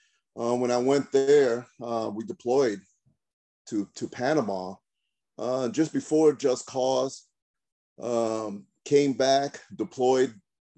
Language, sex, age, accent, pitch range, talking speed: English, male, 40-59, American, 100-130 Hz, 110 wpm